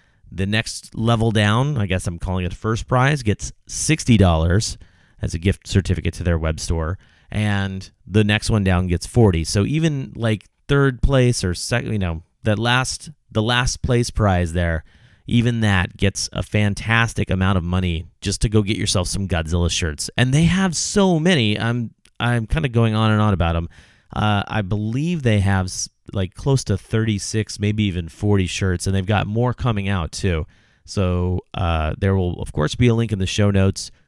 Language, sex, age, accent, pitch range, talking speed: English, male, 30-49, American, 90-110 Hz, 195 wpm